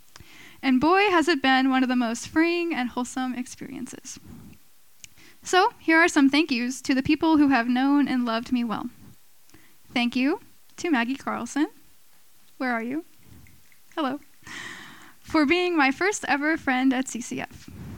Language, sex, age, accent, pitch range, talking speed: English, female, 10-29, American, 245-300 Hz, 155 wpm